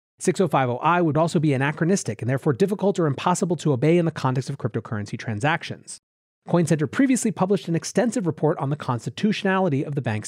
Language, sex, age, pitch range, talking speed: English, male, 30-49, 130-180 Hz, 175 wpm